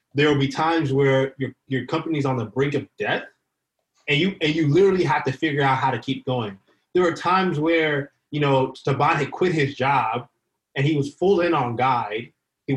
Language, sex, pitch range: English, male, 130-165 Hz